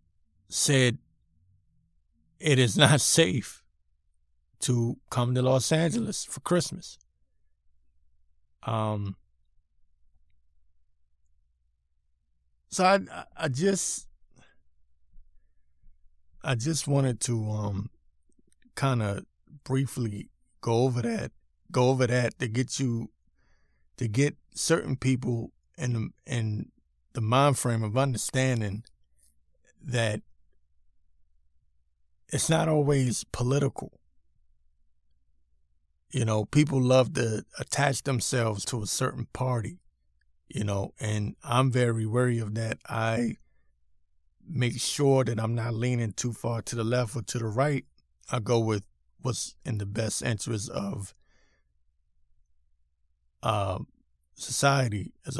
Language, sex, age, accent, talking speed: English, male, 50-69, American, 105 wpm